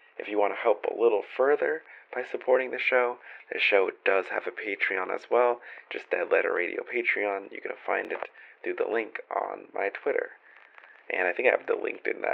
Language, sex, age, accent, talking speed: English, male, 30-49, American, 215 wpm